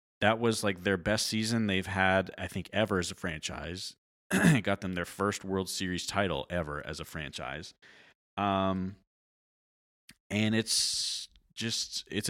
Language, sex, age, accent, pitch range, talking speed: English, male, 30-49, American, 85-100 Hz, 150 wpm